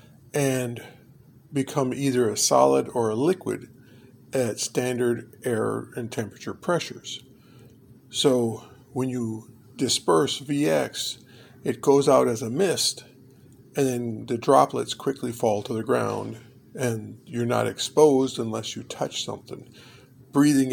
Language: English